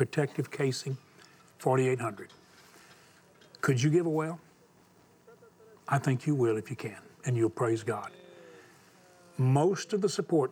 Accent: American